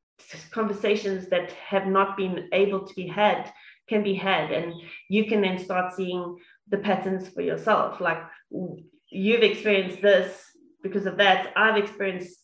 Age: 20-39